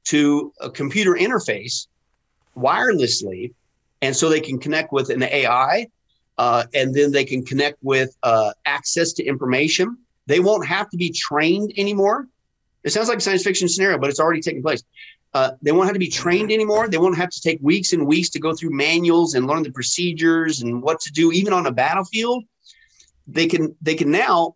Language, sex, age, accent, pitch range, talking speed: English, male, 50-69, American, 140-180 Hz, 195 wpm